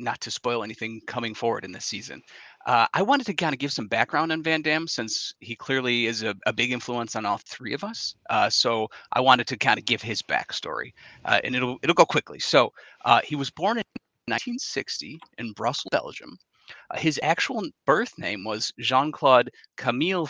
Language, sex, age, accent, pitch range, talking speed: English, male, 30-49, American, 115-150 Hz, 200 wpm